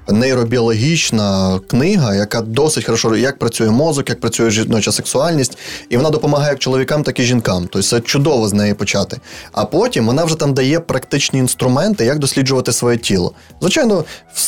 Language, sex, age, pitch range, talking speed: Ukrainian, male, 20-39, 115-145 Hz, 160 wpm